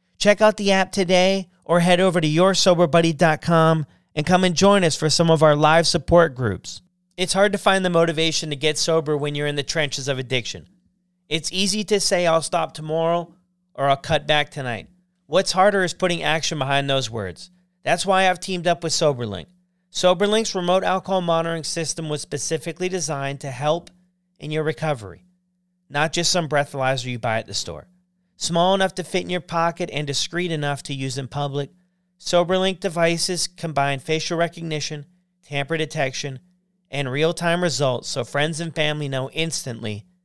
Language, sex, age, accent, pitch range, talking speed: English, male, 40-59, American, 145-180 Hz, 175 wpm